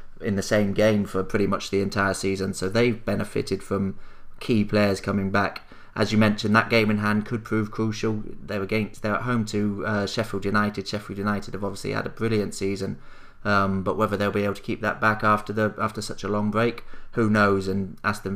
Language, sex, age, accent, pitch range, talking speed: English, male, 30-49, British, 100-110 Hz, 215 wpm